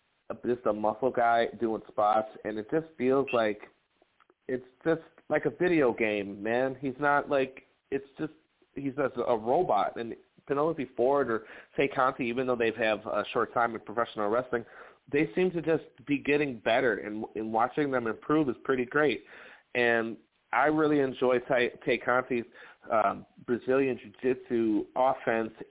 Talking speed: 160 wpm